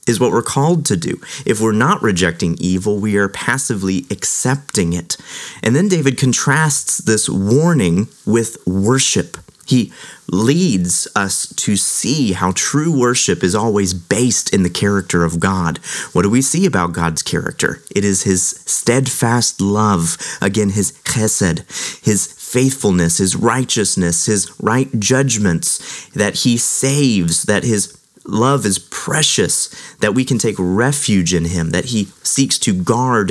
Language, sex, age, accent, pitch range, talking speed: English, male, 30-49, American, 95-130 Hz, 150 wpm